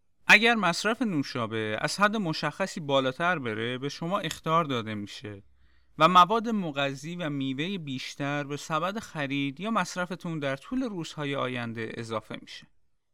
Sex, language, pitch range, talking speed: male, Persian, 130-195 Hz, 135 wpm